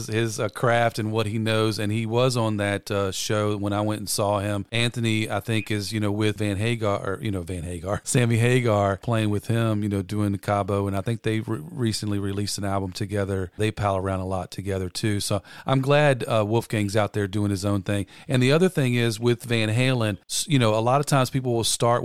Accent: American